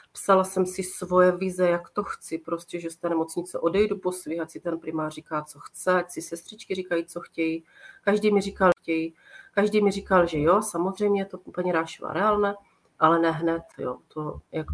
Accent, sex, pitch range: native, female, 160-185 Hz